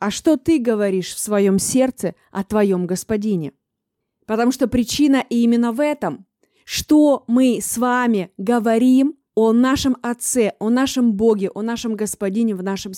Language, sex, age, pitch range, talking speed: Russian, female, 20-39, 215-255 Hz, 150 wpm